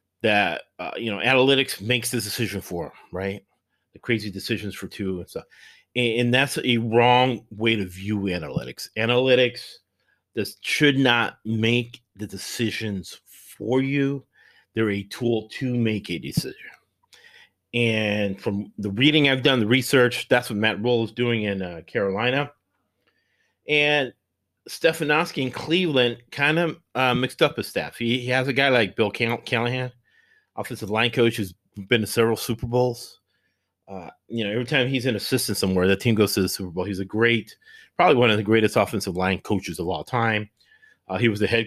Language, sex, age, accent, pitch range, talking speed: English, male, 40-59, American, 105-125 Hz, 175 wpm